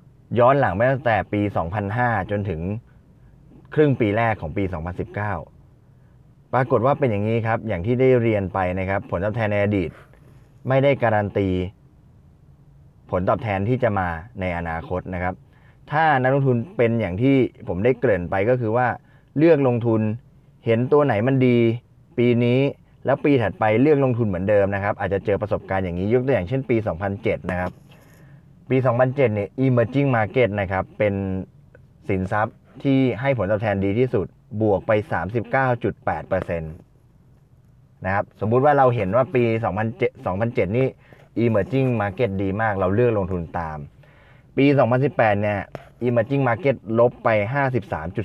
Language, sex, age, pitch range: Thai, male, 20-39, 95-130 Hz